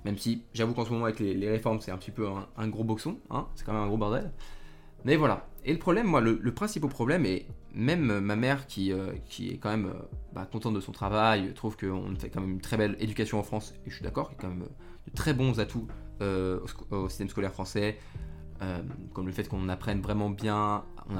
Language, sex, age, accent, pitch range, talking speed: French, male, 20-39, French, 100-130 Hz, 250 wpm